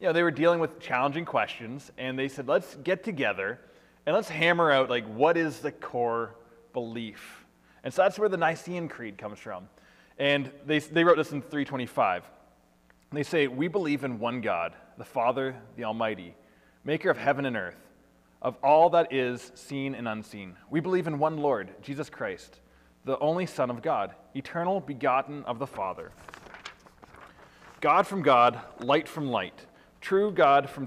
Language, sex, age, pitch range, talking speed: English, male, 20-39, 115-150 Hz, 175 wpm